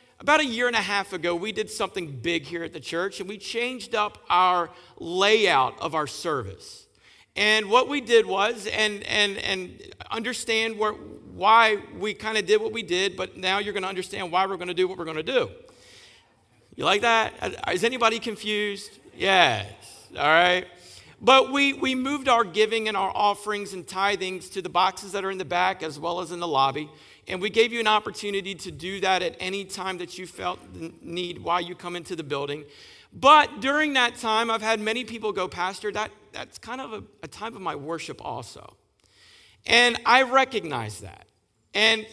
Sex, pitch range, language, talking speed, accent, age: male, 180-225 Hz, English, 200 wpm, American, 50-69